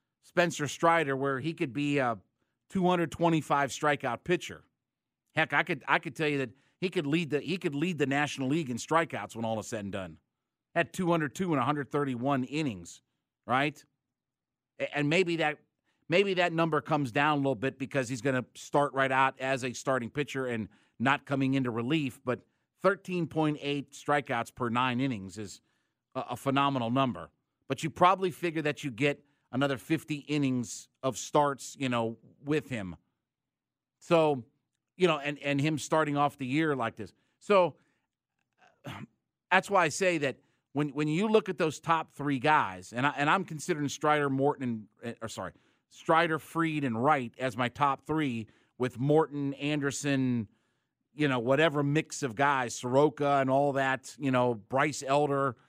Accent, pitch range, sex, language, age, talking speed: American, 130-155 Hz, male, English, 50-69, 170 wpm